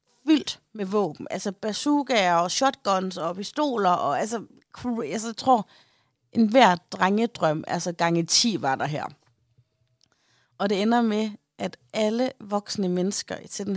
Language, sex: Danish, female